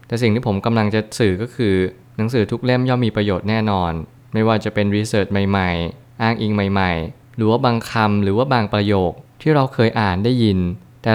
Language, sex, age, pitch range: Thai, male, 20-39, 100-120 Hz